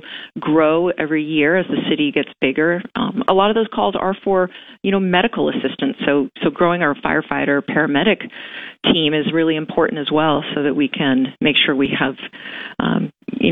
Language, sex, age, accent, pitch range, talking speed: English, female, 40-59, American, 150-215 Hz, 185 wpm